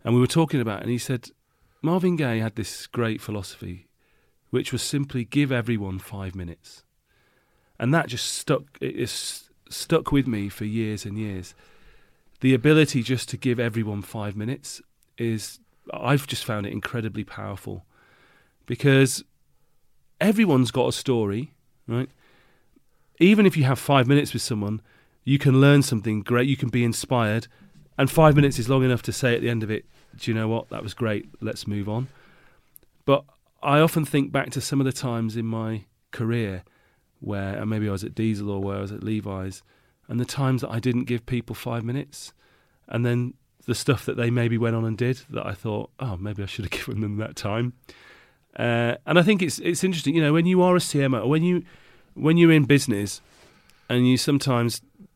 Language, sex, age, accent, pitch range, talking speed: English, male, 40-59, British, 110-140 Hz, 195 wpm